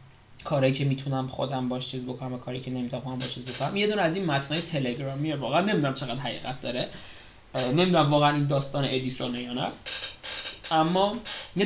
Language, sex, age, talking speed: Persian, male, 20-39, 175 wpm